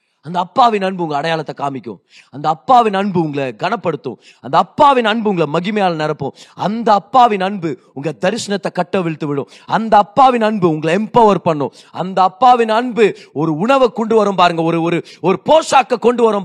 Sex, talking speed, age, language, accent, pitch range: male, 155 wpm, 30-49, Tamil, native, 165-240 Hz